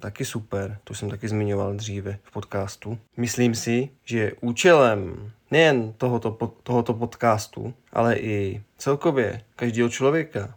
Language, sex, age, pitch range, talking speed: Czech, male, 20-39, 105-120 Hz, 125 wpm